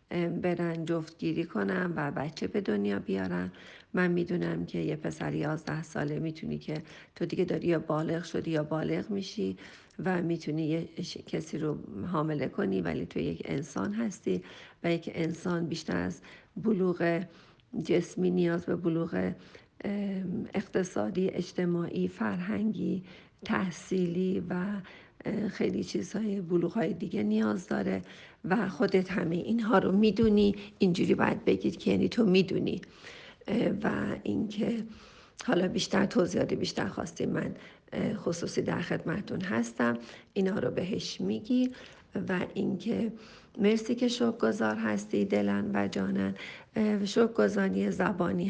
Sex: female